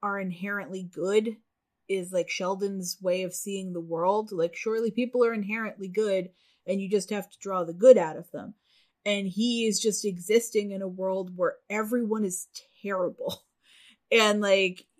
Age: 30-49